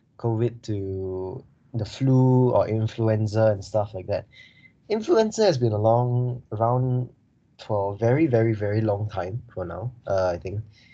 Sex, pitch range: male, 105-125 Hz